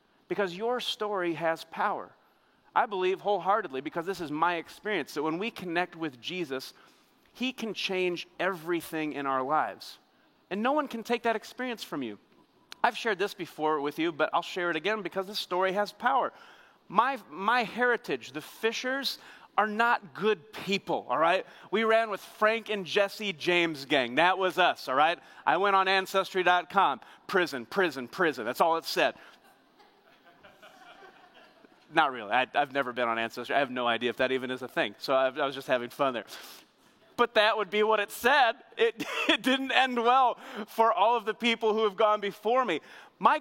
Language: English